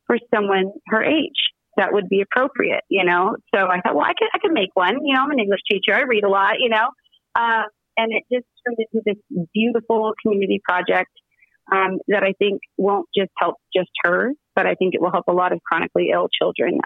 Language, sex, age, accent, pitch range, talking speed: English, female, 30-49, American, 195-245 Hz, 225 wpm